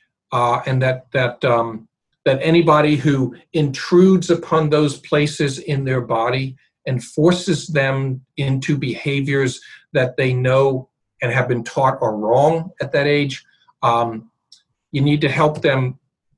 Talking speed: 140 wpm